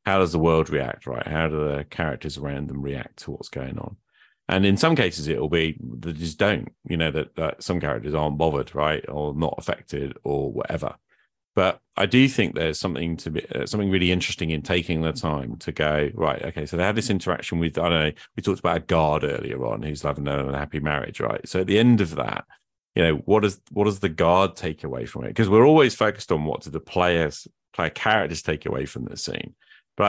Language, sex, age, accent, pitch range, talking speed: English, male, 40-59, British, 75-95 Hz, 235 wpm